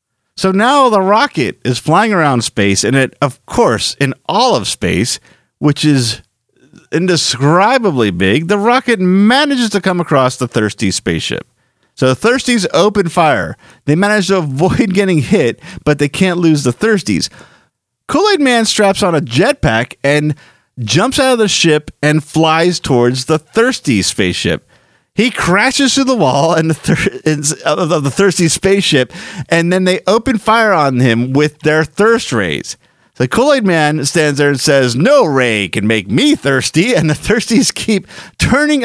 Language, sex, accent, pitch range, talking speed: English, male, American, 130-205 Hz, 160 wpm